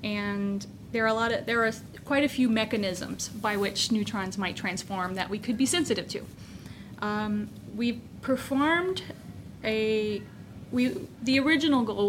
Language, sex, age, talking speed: English, female, 30-49, 155 wpm